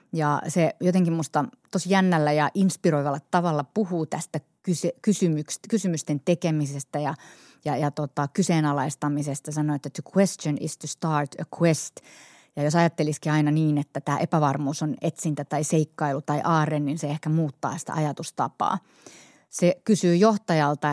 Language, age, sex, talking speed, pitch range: Finnish, 30-49, female, 145 wpm, 150-175 Hz